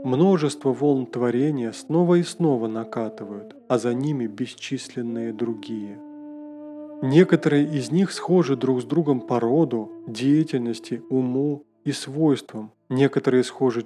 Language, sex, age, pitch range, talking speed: Russian, male, 20-39, 125-175 Hz, 115 wpm